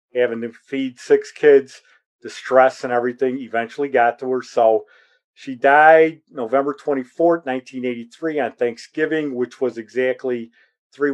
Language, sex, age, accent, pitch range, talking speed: English, male, 40-59, American, 115-155 Hz, 135 wpm